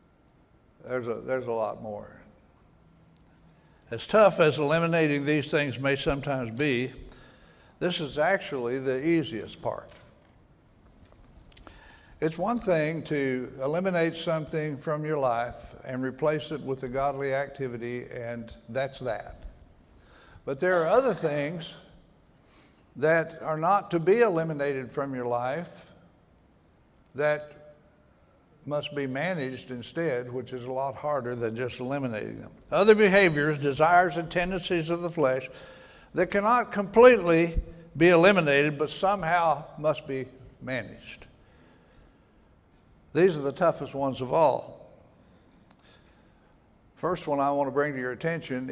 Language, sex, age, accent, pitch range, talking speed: English, male, 60-79, American, 130-165 Hz, 125 wpm